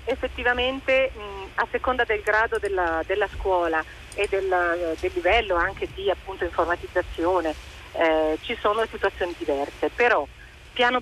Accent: native